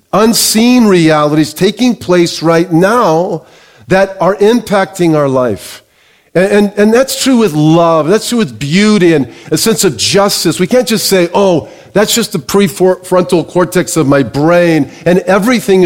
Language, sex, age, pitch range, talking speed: English, male, 40-59, 155-200 Hz, 160 wpm